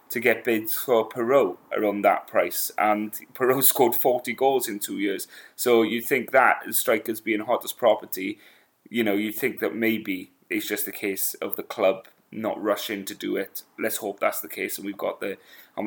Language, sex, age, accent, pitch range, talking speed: English, male, 20-39, British, 105-125 Hz, 200 wpm